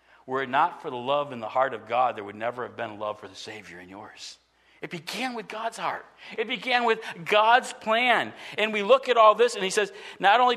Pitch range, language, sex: 185-240 Hz, English, male